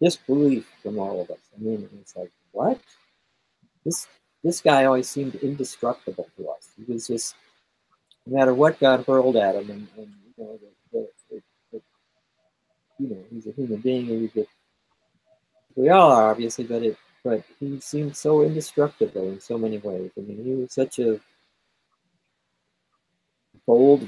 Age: 40-59